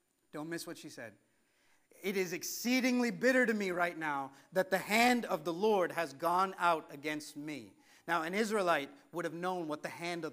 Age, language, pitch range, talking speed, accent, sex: 50-69, English, 165-220 Hz, 200 wpm, American, male